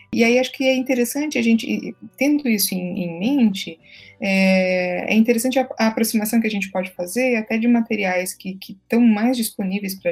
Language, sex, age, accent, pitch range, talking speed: Portuguese, female, 20-39, Brazilian, 195-235 Hz, 190 wpm